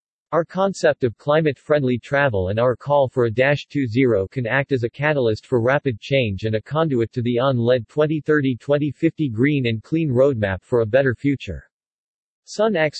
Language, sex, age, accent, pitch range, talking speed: English, male, 40-59, American, 120-150 Hz, 170 wpm